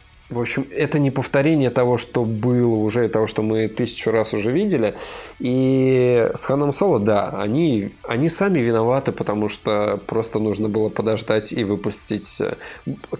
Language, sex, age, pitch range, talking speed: Russian, male, 20-39, 105-125 Hz, 155 wpm